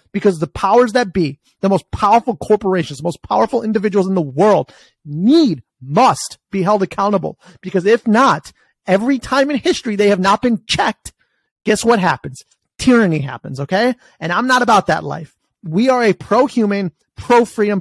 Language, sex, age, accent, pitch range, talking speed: English, male, 30-49, American, 170-230 Hz, 170 wpm